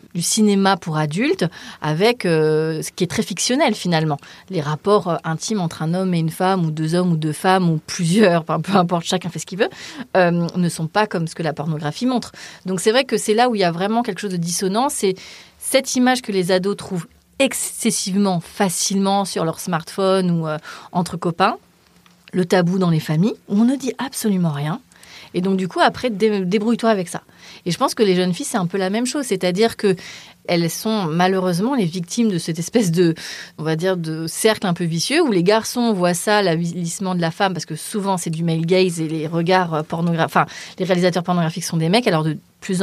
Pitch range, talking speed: 165-210 Hz, 220 wpm